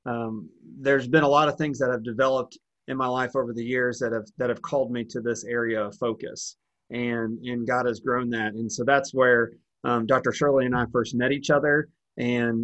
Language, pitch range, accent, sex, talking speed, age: English, 120-140 Hz, American, male, 225 wpm, 30-49